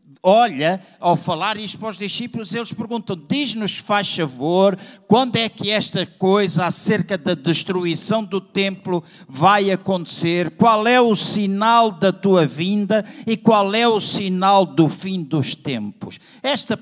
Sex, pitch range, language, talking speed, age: male, 170-210 Hz, Portuguese, 145 wpm, 50-69